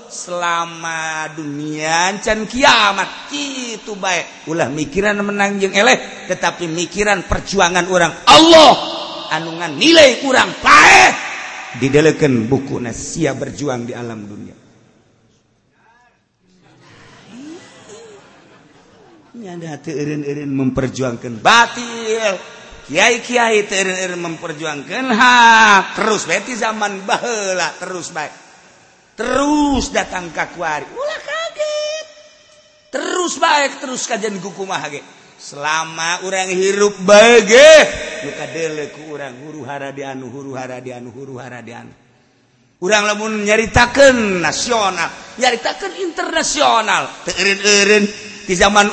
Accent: native